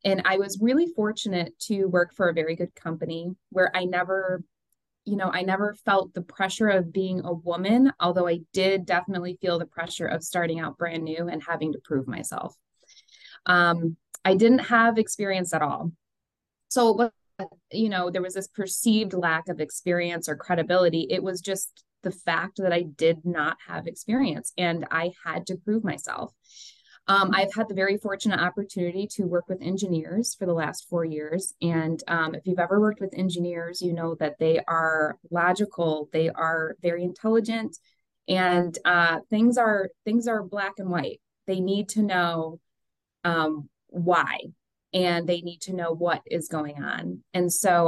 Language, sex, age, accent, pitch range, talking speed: English, female, 20-39, American, 165-200 Hz, 175 wpm